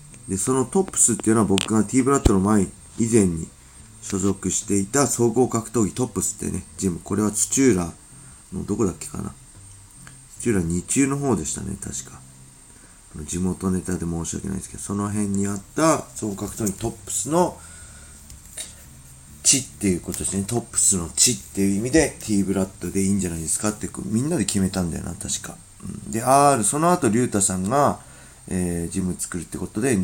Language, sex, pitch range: Japanese, male, 85-110 Hz